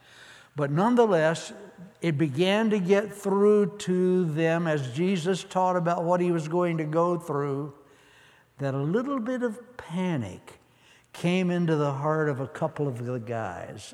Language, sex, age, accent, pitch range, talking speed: English, male, 60-79, American, 130-165 Hz, 155 wpm